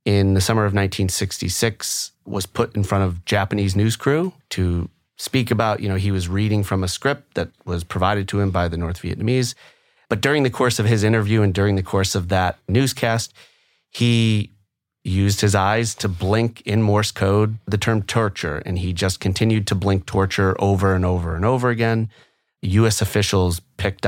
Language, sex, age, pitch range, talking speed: English, male, 30-49, 95-110 Hz, 185 wpm